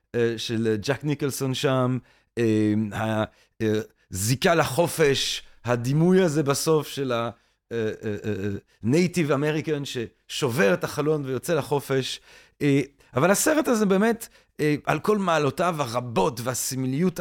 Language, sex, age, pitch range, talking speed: Hebrew, male, 40-59, 120-165 Hz, 90 wpm